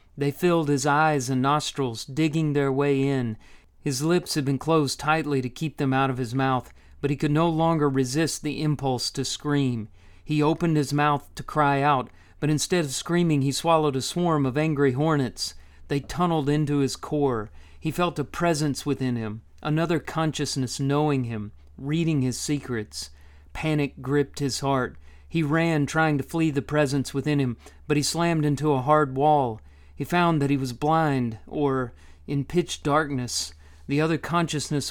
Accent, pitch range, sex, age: American, 120-155 Hz, male, 40-59